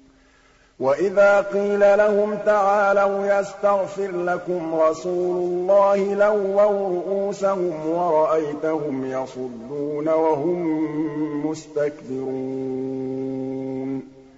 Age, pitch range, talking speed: 50-69, 145-190 Hz, 60 wpm